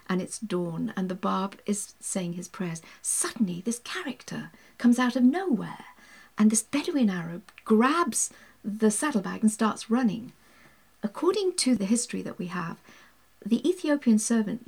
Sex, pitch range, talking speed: female, 195-250 Hz, 150 wpm